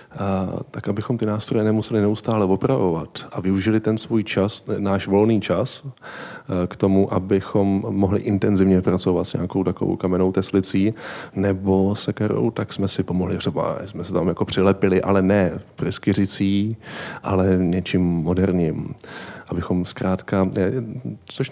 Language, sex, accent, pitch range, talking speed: Czech, male, native, 95-110 Hz, 130 wpm